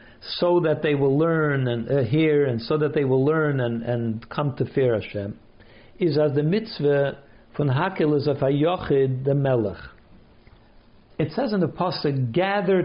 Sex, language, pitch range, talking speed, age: male, English, 130-175 Hz, 165 wpm, 60-79